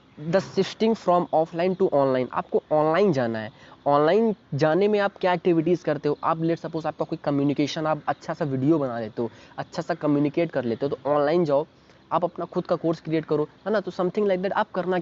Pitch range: 140-175 Hz